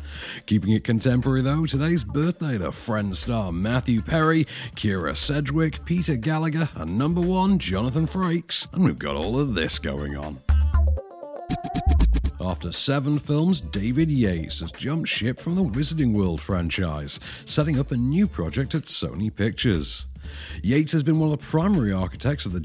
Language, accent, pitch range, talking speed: English, British, 95-145 Hz, 155 wpm